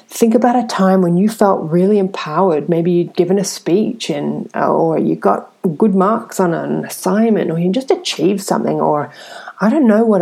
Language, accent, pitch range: English, Australian, 180-215 Hz